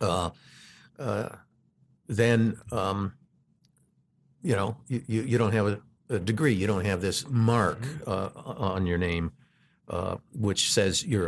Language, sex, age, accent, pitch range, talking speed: English, male, 50-69, American, 100-120 Hz, 140 wpm